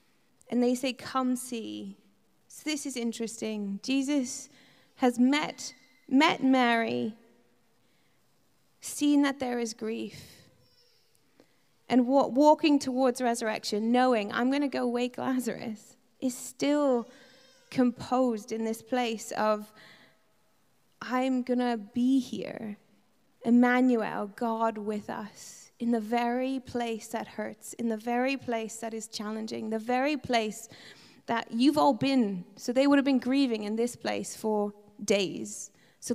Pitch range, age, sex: 225-265 Hz, 20-39, female